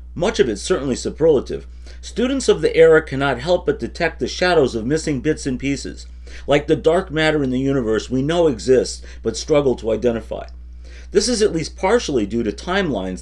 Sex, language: male, English